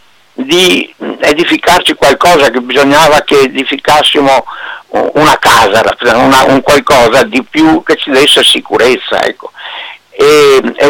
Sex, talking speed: male, 115 wpm